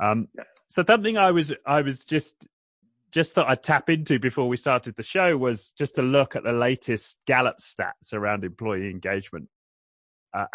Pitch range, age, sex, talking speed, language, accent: 95-135 Hz, 30-49, male, 175 wpm, English, British